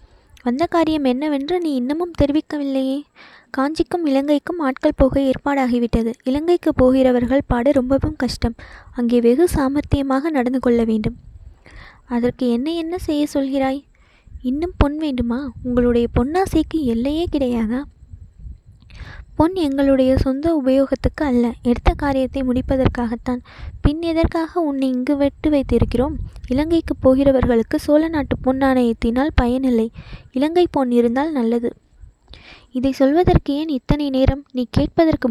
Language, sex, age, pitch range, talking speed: Tamil, female, 20-39, 245-290 Hz, 110 wpm